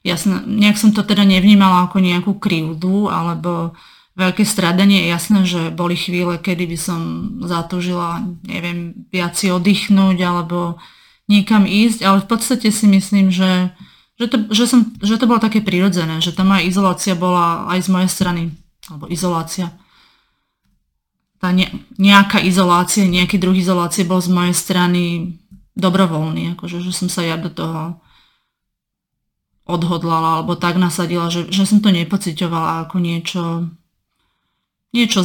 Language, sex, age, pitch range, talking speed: Slovak, female, 30-49, 170-195 Hz, 145 wpm